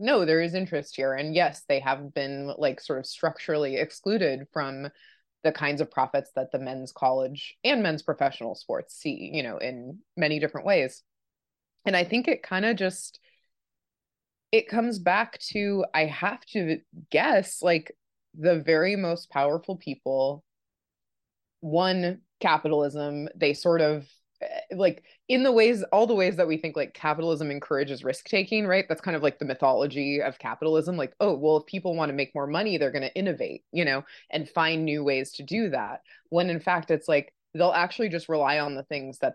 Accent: American